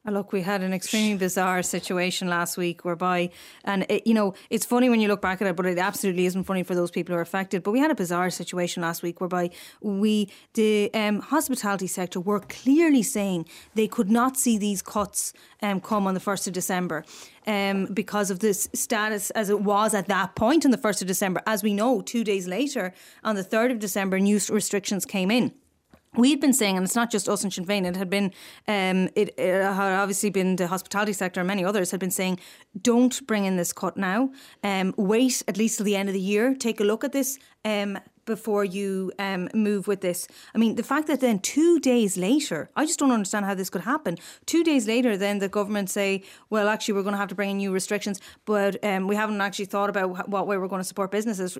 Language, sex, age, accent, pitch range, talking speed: English, female, 20-39, Irish, 190-220 Hz, 230 wpm